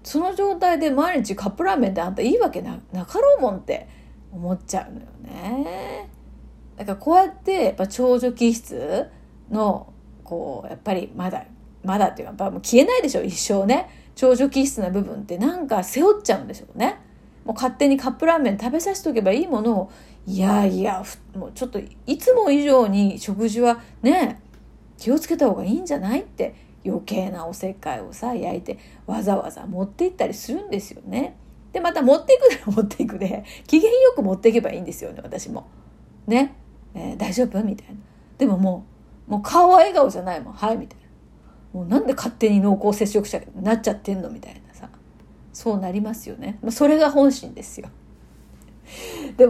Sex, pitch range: female, 205-290 Hz